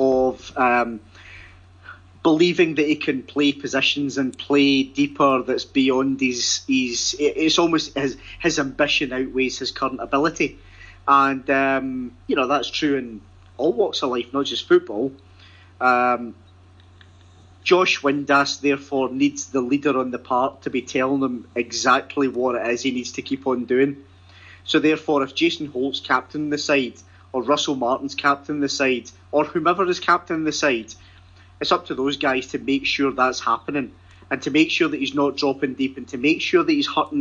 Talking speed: 175 wpm